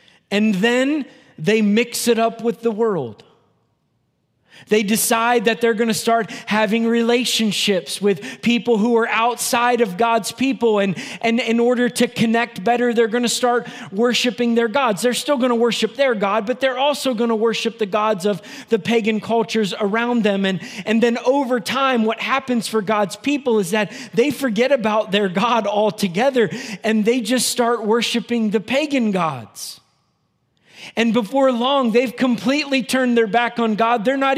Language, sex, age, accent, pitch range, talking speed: English, male, 30-49, American, 220-250 Hz, 175 wpm